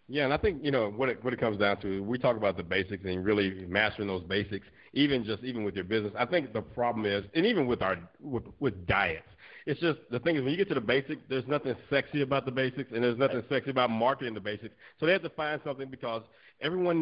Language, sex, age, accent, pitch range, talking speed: English, male, 50-69, American, 115-145 Hz, 260 wpm